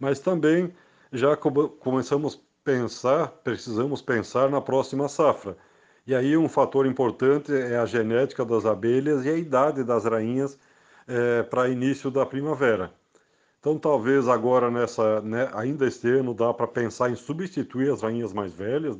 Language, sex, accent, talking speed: Portuguese, male, Brazilian, 150 wpm